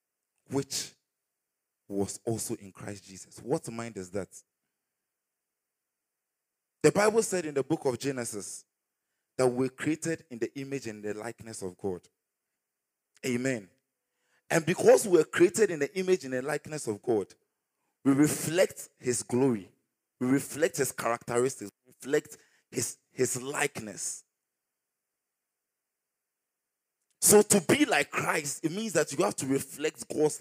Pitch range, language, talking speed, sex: 115-170 Hz, English, 135 wpm, male